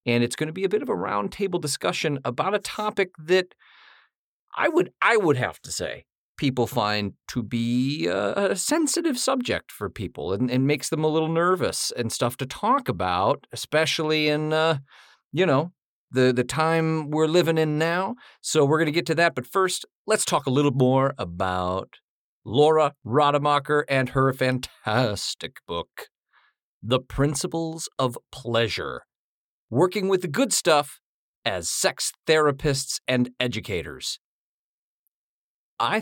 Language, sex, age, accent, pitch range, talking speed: English, male, 40-59, American, 115-165 Hz, 150 wpm